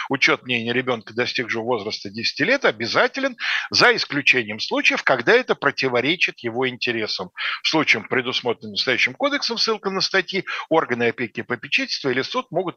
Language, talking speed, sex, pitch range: Russian, 145 wpm, male, 120-190 Hz